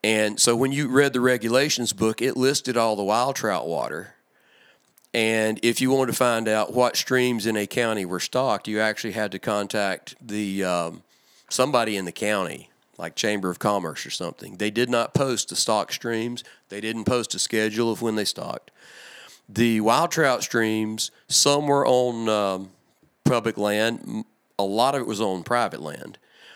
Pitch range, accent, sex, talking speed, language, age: 105-120 Hz, American, male, 180 wpm, English, 40-59